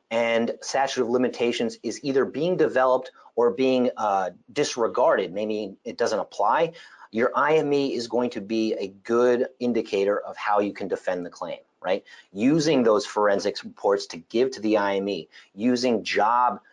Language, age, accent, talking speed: English, 30-49, American, 160 wpm